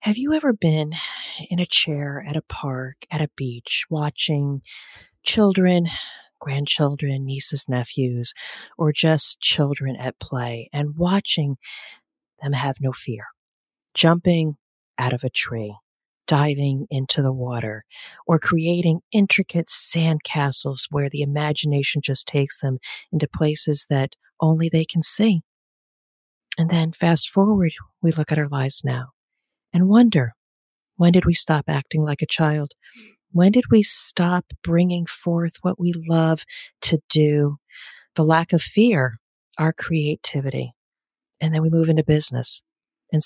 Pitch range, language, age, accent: 140-170 Hz, English, 40-59, American